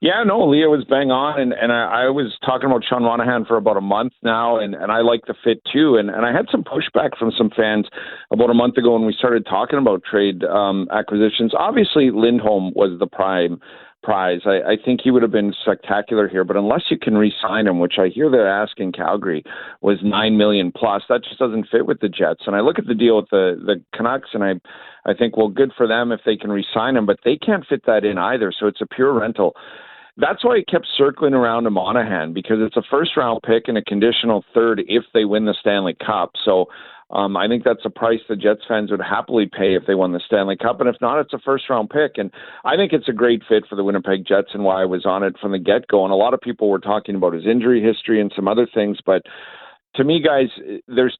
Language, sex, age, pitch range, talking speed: English, male, 40-59, 100-120 Hz, 245 wpm